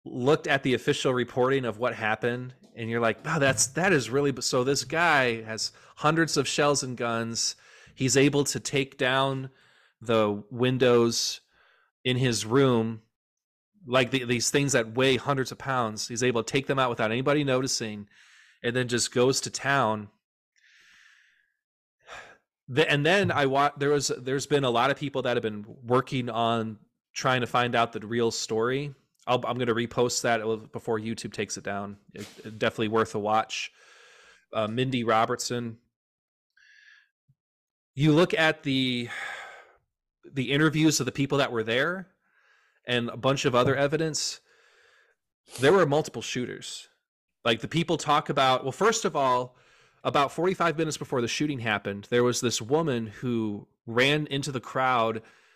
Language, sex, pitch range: English, male, 115-145 Hz